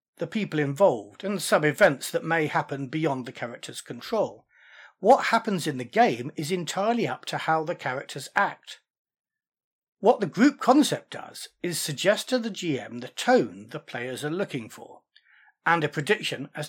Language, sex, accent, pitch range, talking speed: English, male, British, 140-205 Hz, 170 wpm